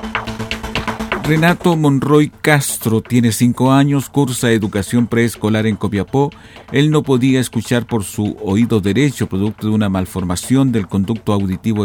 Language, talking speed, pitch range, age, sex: Spanish, 130 wpm, 105-125 Hz, 50-69, male